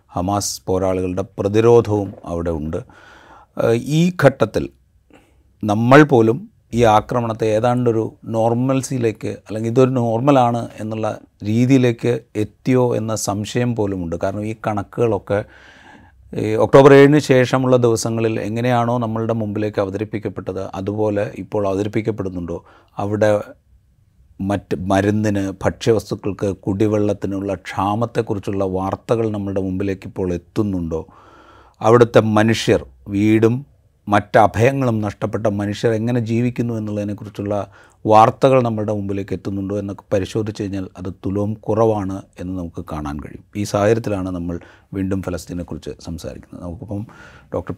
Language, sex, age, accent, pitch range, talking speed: Malayalam, male, 30-49, native, 95-115 Hz, 100 wpm